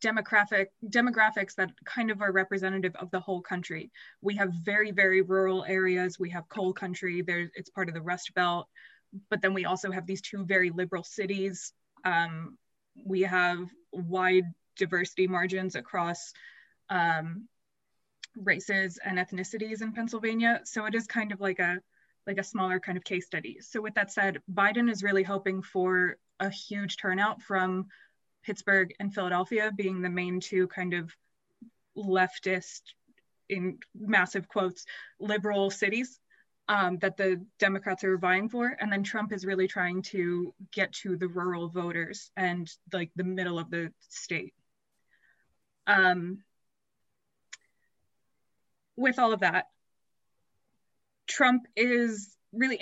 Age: 20-39